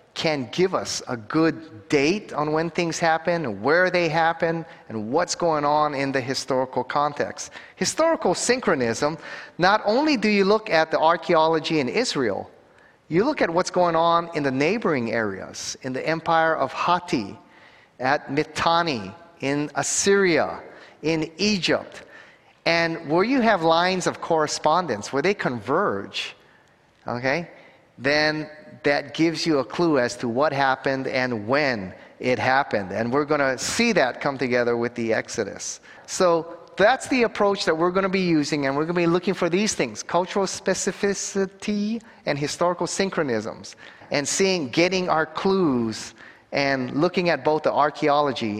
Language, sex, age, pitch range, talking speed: English, male, 40-59, 140-180 Hz, 155 wpm